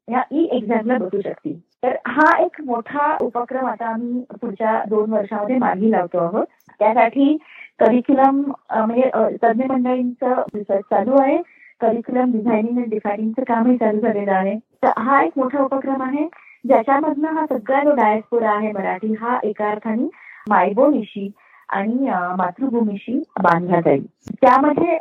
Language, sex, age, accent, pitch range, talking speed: Marathi, female, 20-39, native, 220-285 Hz, 135 wpm